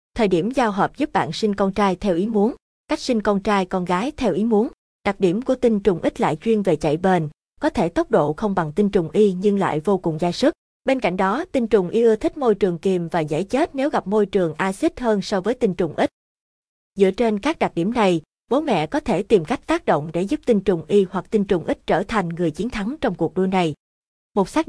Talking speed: 260 wpm